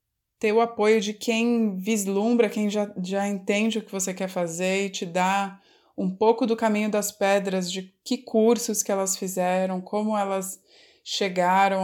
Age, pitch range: 20-39, 175-205 Hz